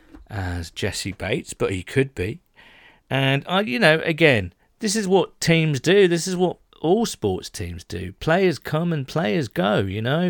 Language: English